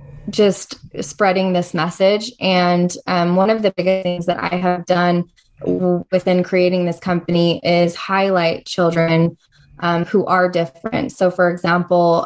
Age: 20-39